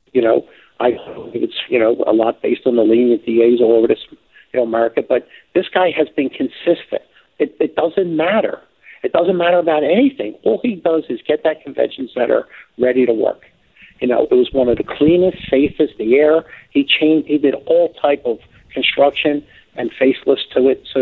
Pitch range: 130-160 Hz